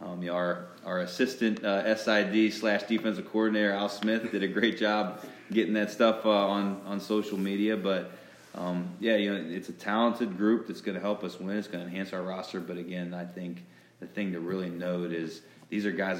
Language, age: English, 20-39